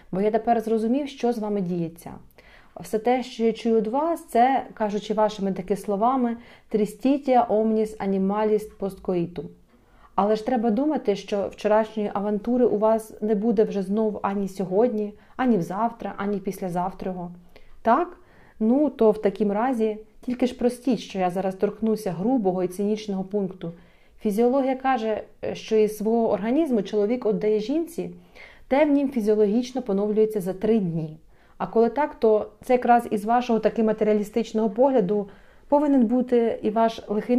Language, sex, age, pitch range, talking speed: Ukrainian, female, 30-49, 195-235 Hz, 150 wpm